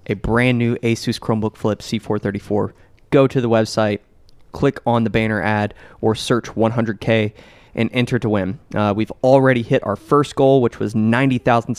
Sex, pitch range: male, 105-130 Hz